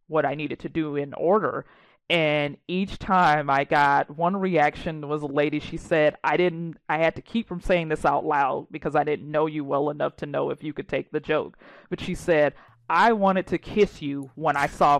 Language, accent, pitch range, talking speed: English, American, 155-210 Hz, 225 wpm